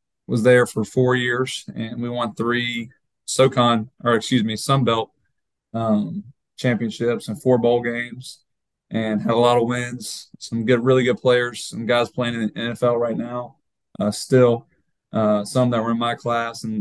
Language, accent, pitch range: English, American, 115-125 Hz